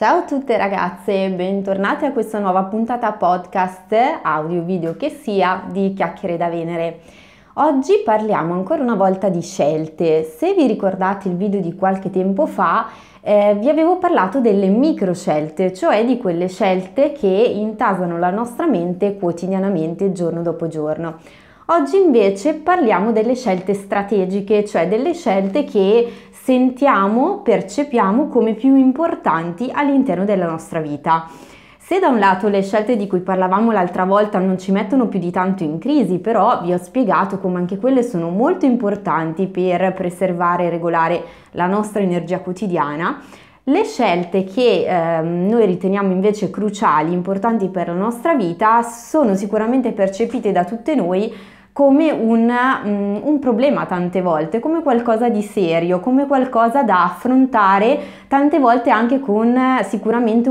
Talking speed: 150 wpm